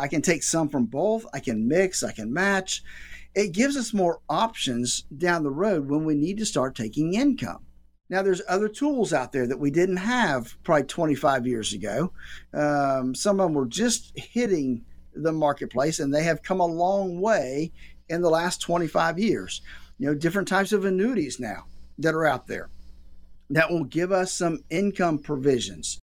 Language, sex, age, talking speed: English, male, 50-69, 185 wpm